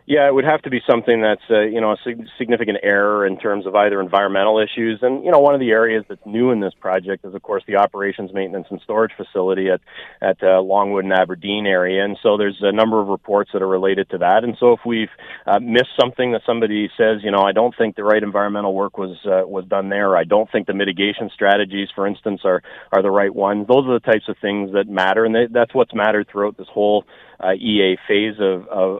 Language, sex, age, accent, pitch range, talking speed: English, male, 40-59, American, 95-110 Hz, 245 wpm